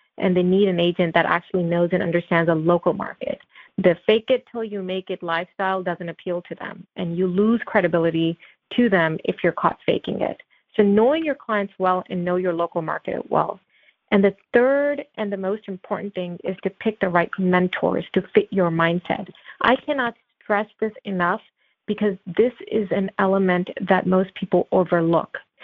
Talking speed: 185 wpm